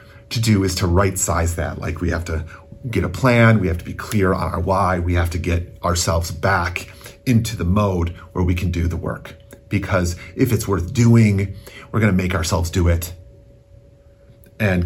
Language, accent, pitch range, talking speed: English, American, 90-110 Hz, 195 wpm